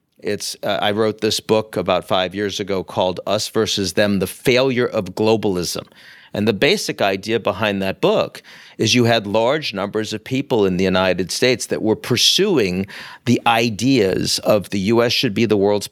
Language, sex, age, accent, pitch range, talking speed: English, male, 50-69, American, 100-125 Hz, 180 wpm